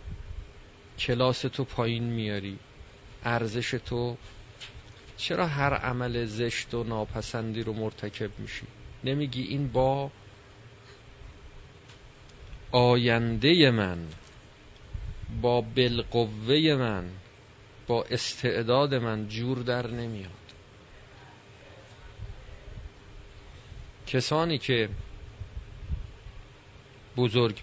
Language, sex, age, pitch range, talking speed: Persian, male, 40-59, 100-125 Hz, 70 wpm